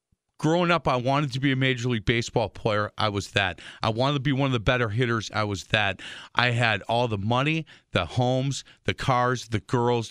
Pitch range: 110-140 Hz